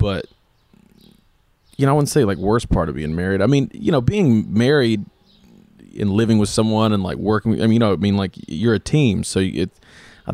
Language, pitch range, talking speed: English, 95-110 Hz, 220 wpm